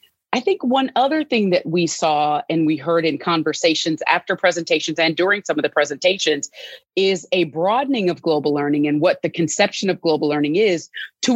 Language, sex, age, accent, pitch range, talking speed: English, female, 30-49, American, 160-230 Hz, 190 wpm